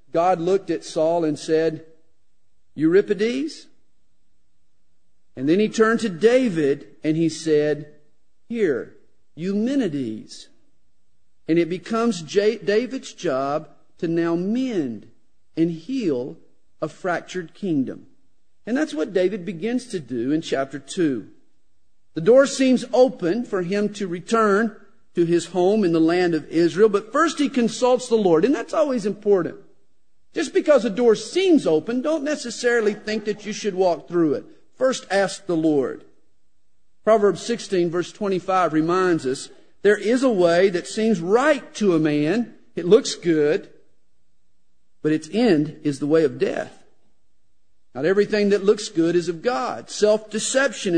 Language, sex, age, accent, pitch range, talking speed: English, male, 50-69, American, 170-235 Hz, 145 wpm